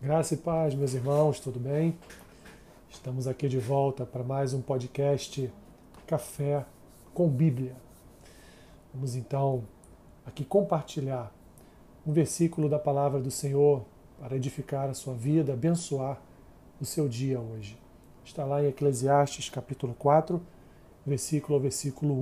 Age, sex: 40-59, male